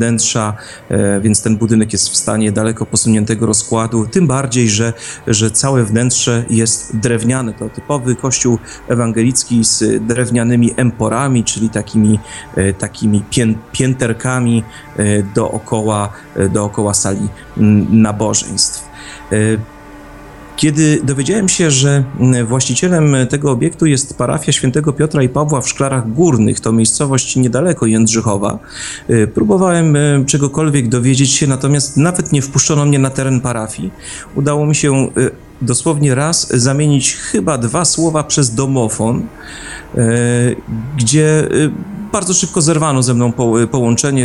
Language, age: Polish, 30-49